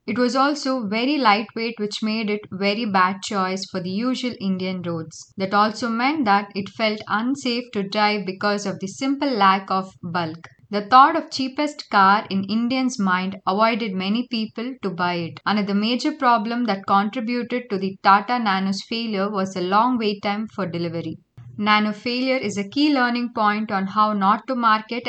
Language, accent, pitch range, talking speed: English, Indian, 195-240 Hz, 180 wpm